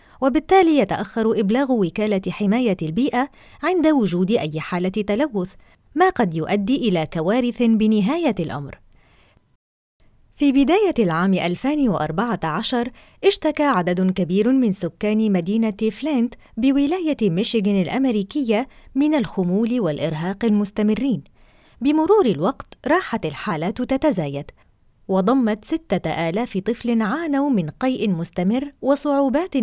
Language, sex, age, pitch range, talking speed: Arabic, female, 30-49, 185-270 Hz, 100 wpm